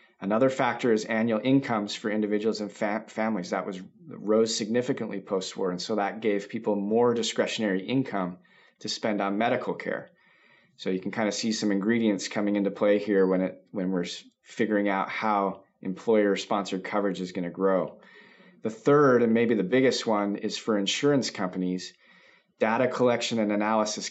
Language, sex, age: English, male, 30-49